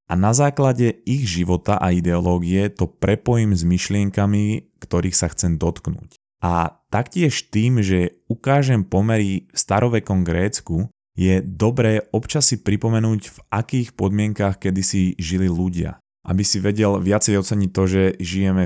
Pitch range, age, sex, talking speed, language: 90-100 Hz, 20-39, male, 135 wpm, Slovak